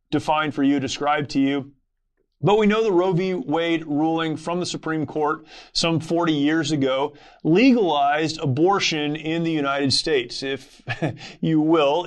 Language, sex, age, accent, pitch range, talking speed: English, male, 30-49, American, 140-160 Hz, 155 wpm